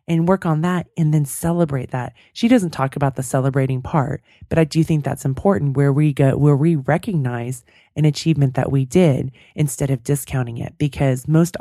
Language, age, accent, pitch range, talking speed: English, 30-49, American, 130-160 Hz, 195 wpm